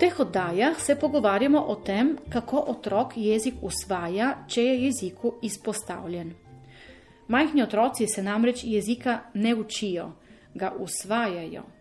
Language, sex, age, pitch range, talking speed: Italian, female, 30-49, 190-240 Hz, 115 wpm